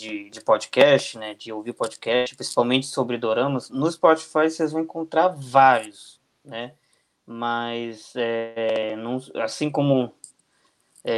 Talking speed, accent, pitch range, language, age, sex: 125 wpm, Brazilian, 120-155 Hz, Portuguese, 20-39, male